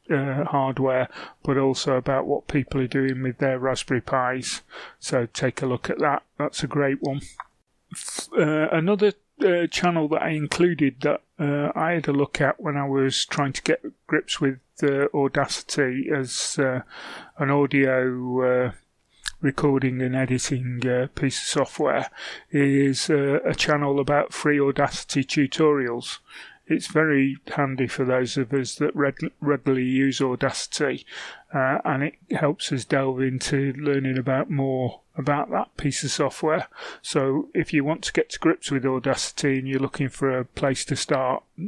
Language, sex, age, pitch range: English, male, 30-49, 130-150 Hz